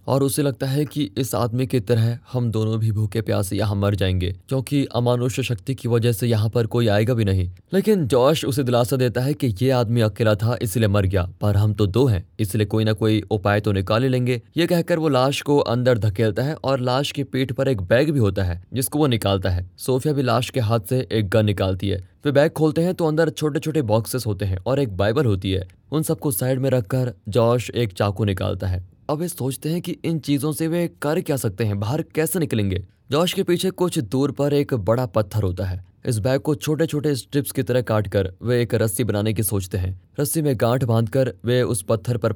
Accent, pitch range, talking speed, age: native, 105-135 Hz, 235 wpm, 20-39